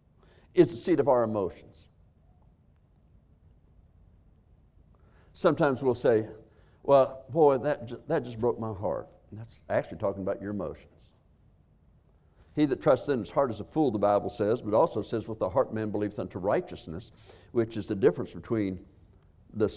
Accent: American